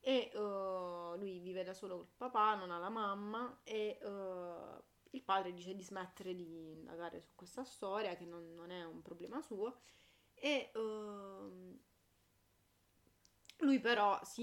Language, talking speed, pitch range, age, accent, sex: Italian, 150 wpm, 185-225 Hz, 20-39, native, female